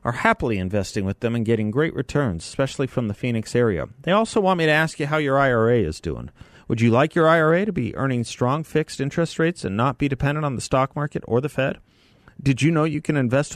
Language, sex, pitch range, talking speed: English, male, 95-140 Hz, 245 wpm